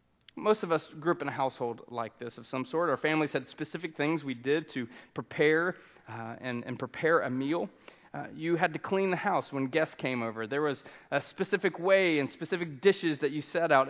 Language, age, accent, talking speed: English, 30-49, American, 220 wpm